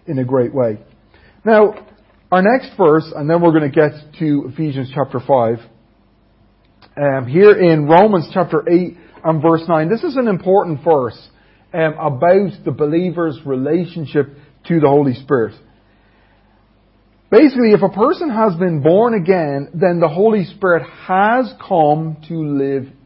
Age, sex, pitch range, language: 40-59, male, 125-180 Hz, English